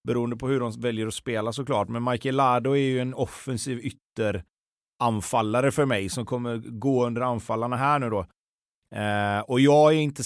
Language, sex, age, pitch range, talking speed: Swedish, male, 30-49, 115-135 Hz, 185 wpm